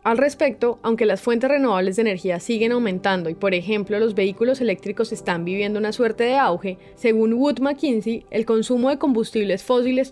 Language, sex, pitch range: Spanish, female, 200-245 Hz